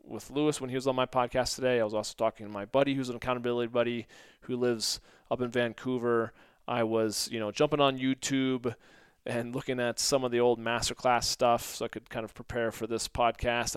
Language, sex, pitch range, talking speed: English, male, 115-135 Hz, 220 wpm